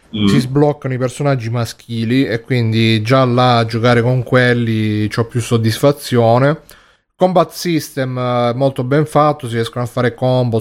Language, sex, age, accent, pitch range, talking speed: Italian, male, 30-49, native, 115-130 Hz, 145 wpm